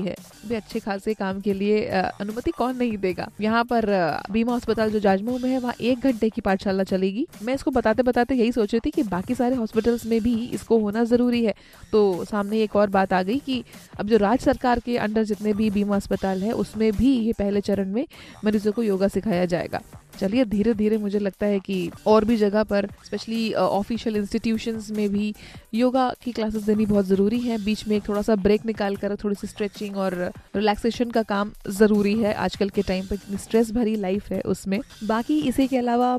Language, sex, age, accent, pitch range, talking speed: Hindi, female, 20-39, native, 205-235 Hz, 180 wpm